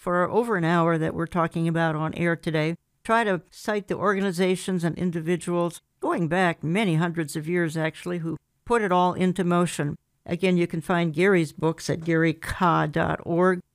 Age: 60-79